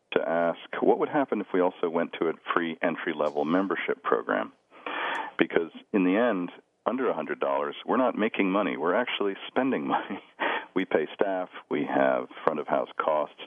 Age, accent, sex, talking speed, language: 50-69, American, male, 160 wpm, English